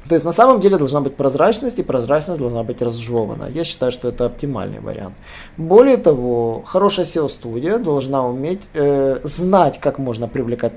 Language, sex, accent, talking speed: Russian, male, native, 165 wpm